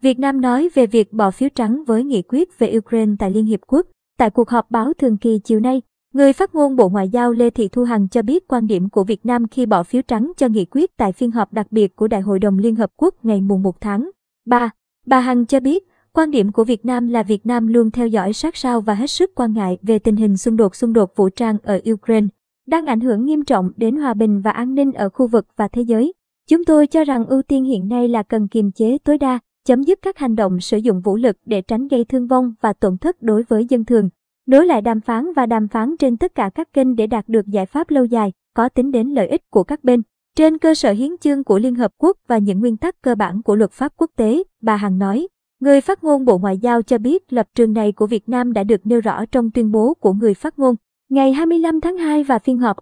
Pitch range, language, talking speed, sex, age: 220-270 Hz, Vietnamese, 265 wpm, male, 20-39